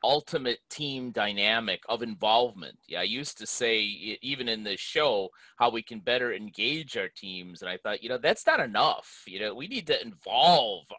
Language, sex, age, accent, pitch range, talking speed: English, male, 30-49, American, 115-160 Hz, 190 wpm